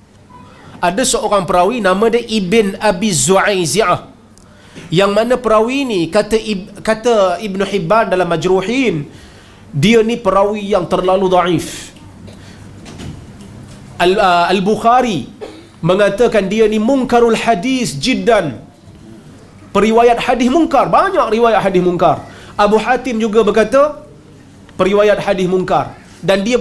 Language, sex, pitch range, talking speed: Malayalam, male, 175-225 Hz, 115 wpm